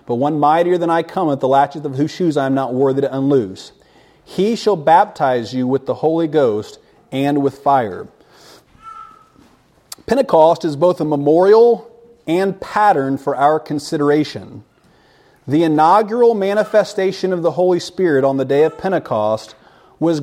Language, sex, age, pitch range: English, male, 40-59, 135-180 Hz